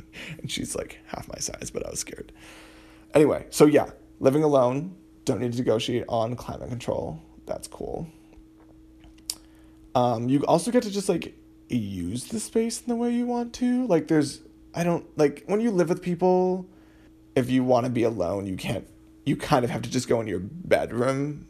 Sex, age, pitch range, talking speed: male, 20-39, 105-150 Hz, 190 wpm